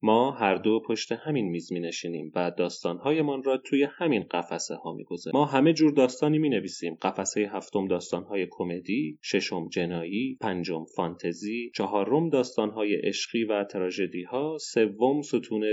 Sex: male